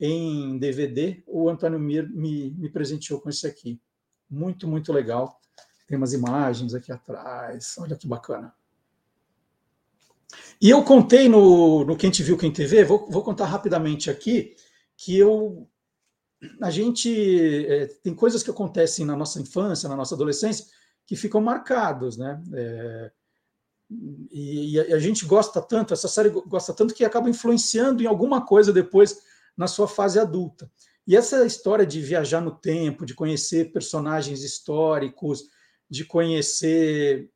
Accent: Brazilian